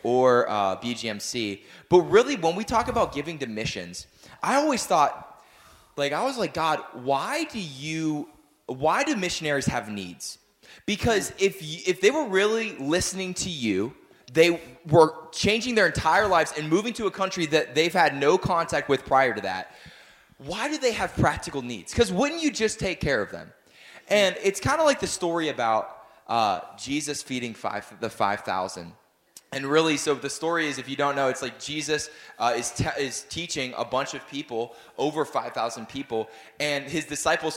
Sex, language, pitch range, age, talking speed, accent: male, English, 130-190 Hz, 20-39, 180 wpm, American